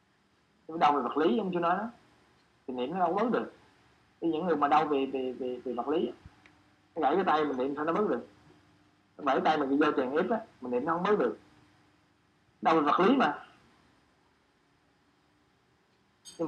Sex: male